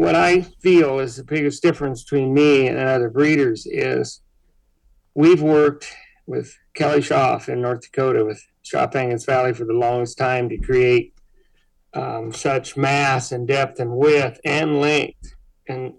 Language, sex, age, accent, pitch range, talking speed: English, male, 40-59, American, 125-155 Hz, 150 wpm